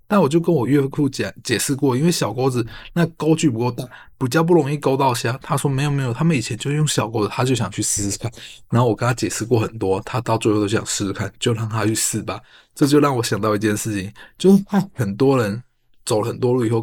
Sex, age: male, 20-39